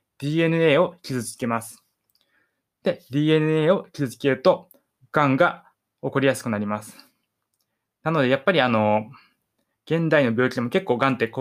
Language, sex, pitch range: Japanese, male, 115-165 Hz